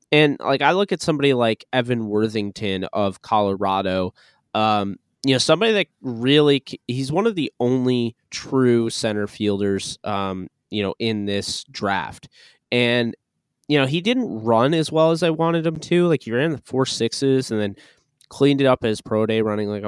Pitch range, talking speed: 110-140 Hz, 180 wpm